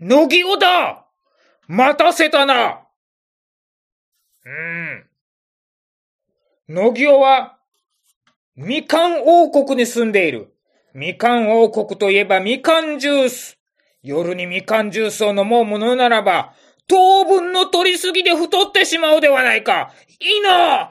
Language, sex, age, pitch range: Japanese, male, 40-59, 240-325 Hz